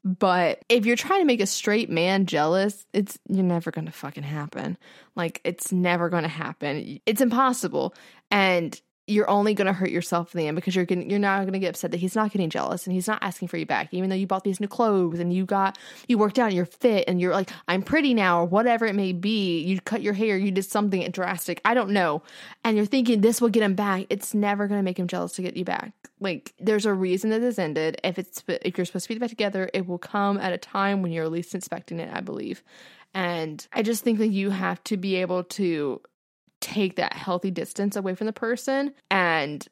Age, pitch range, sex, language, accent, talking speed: 10-29, 170-205 Hz, female, English, American, 240 wpm